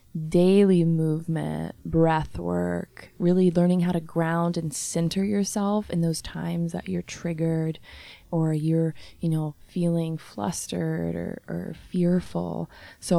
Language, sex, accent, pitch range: English, female, American, 160-180 Hz